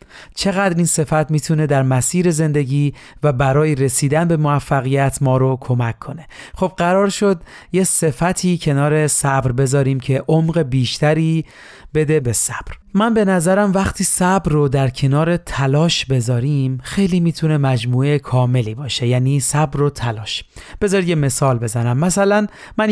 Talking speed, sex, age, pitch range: 145 wpm, male, 40-59, 135-165 Hz